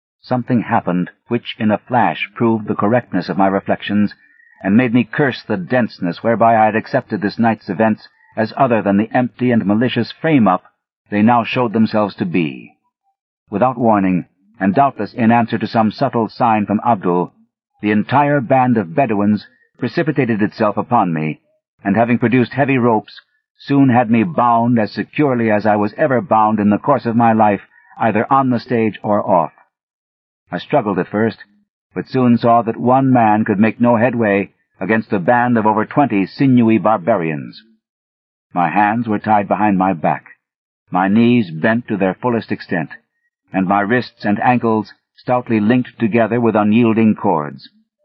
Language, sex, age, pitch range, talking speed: English, male, 50-69, 105-125 Hz, 170 wpm